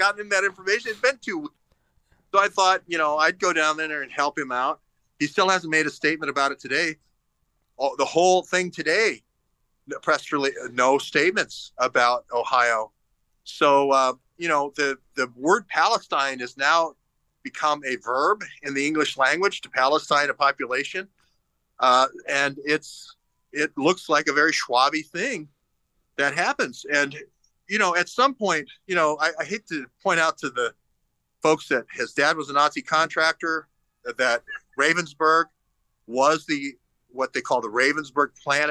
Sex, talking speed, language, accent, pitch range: male, 165 wpm, English, American, 140-180 Hz